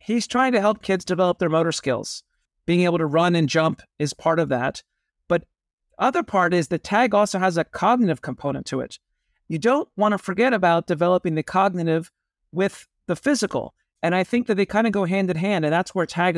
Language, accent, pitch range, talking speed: English, American, 165-210 Hz, 215 wpm